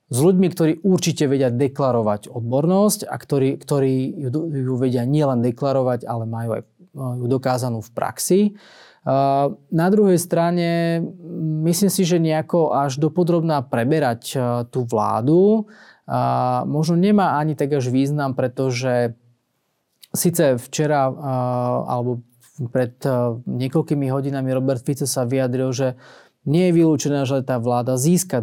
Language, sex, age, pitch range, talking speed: Slovak, male, 30-49, 125-155 Hz, 125 wpm